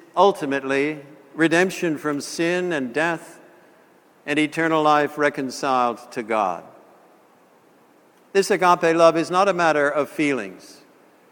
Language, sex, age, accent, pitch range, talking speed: English, male, 60-79, American, 145-180 Hz, 110 wpm